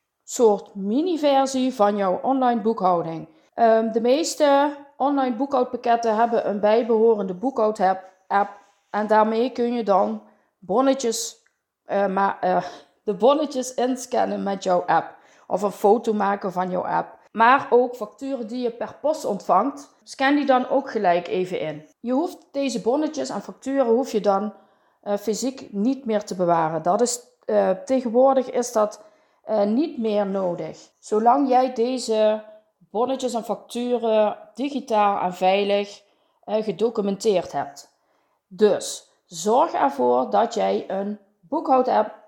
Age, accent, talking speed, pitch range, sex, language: 40-59, Dutch, 135 wpm, 200-255 Hz, female, Dutch